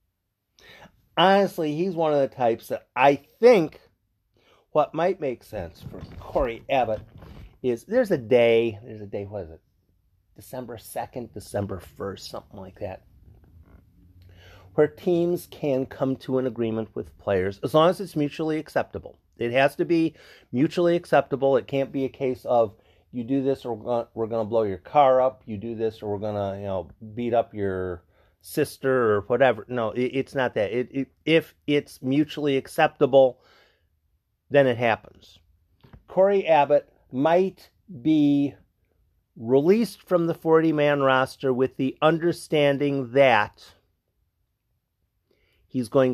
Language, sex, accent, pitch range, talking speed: English, male, American, 100-145 Hz, 150 wpm